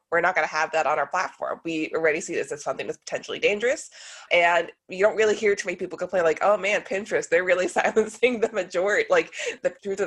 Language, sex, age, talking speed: English, female, 20-39, 240 wpm